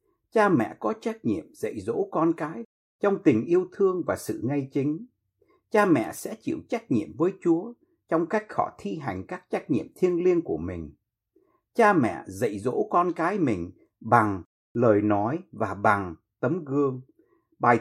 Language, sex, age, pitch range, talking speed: Vietnamese, male, 60-79, 110-185 Hz, 175 wpm